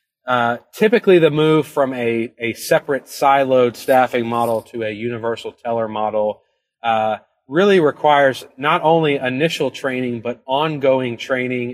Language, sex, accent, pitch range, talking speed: English, male, American, 115-135 Hz, 135 wpm